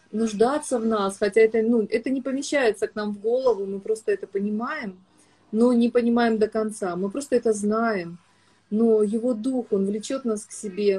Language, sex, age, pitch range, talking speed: Russian, female, 30-49, 205-245 Hz, 185 wpm